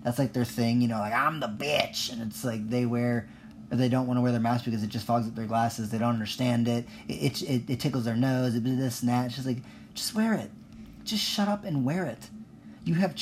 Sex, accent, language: male, American, English